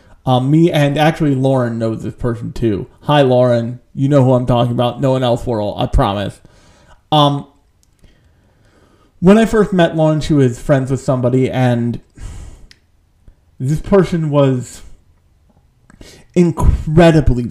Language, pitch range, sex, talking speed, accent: English, 120-160 Hz, male, 135 wpm, American